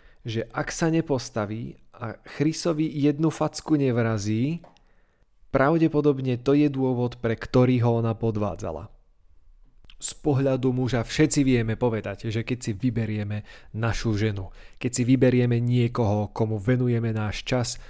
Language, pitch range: Slovak, 110-135 Hz